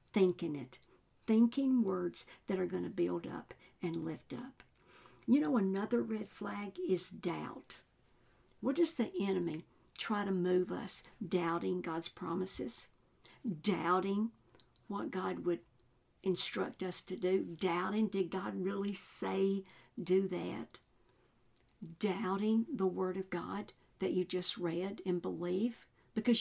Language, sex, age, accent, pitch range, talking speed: English, female, 60-79, American, 175-210 Hz, 130 wpm